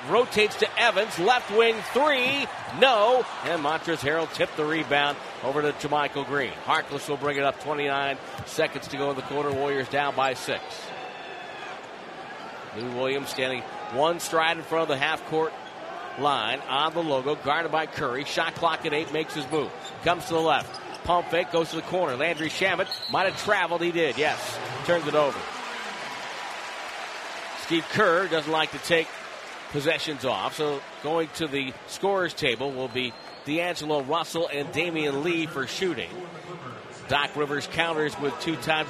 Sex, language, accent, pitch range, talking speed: male, English, American, 140-165 Hz, 165 wpm